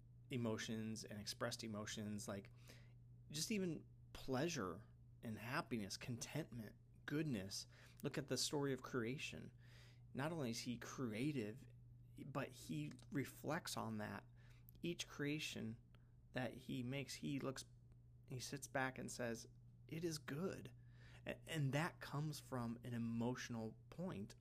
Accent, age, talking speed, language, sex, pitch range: American, 30-49, 125 wpm, English, male, 115-130 Hz